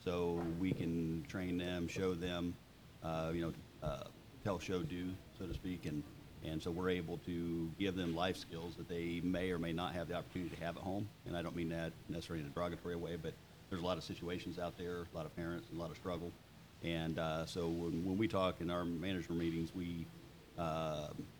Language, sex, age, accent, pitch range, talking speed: English, male, 50-69, American, 80-85 Hz, 225 wpm